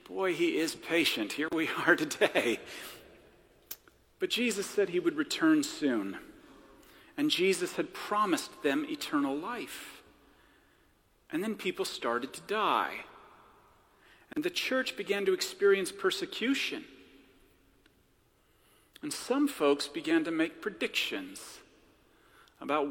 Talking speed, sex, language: 115 wpm, male, English